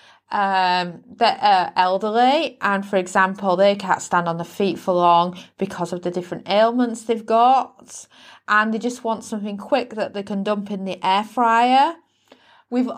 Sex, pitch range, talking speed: female, 190-235 Hz, 170 wpm